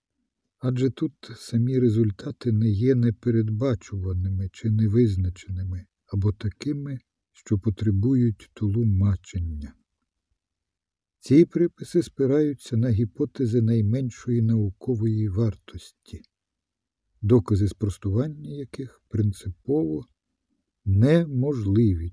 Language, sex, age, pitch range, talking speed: Ukrainian, male, 50-69, 95-120 Hz, 75 wpm